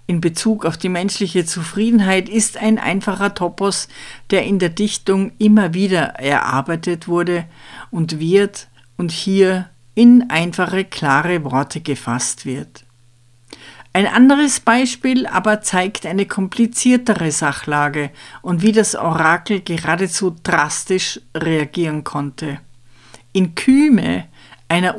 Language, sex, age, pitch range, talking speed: German, female, 50-69, 150-215 Hz, 115 wpm